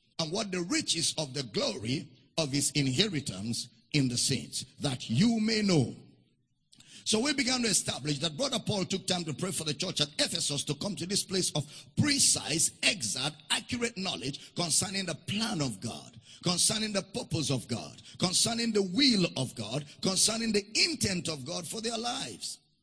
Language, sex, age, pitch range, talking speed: English, male, 50-69, 150-220 Hz, 175 wpm